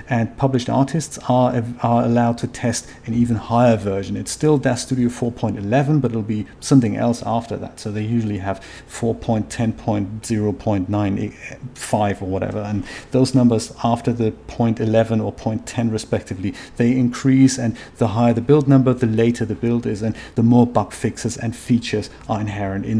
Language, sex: English, male